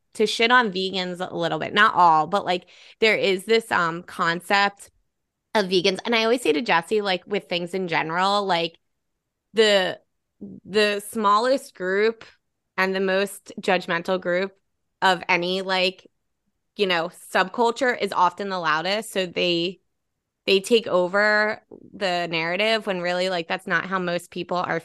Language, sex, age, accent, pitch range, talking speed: English, female, 20-39, American, 175-205 Hz, 155 wpm